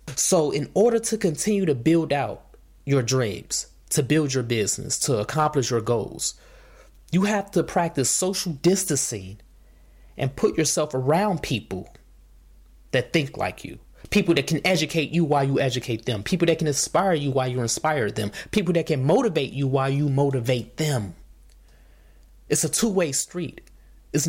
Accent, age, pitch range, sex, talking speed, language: American, 20-39, 110-160 Hz, male, 165 wpm, English